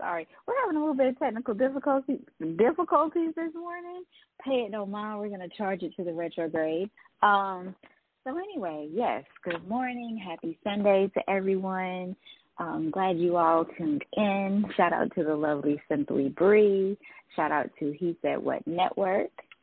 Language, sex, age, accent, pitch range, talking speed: English, female, 20-39, American, 160-215 Hz, 160 wpm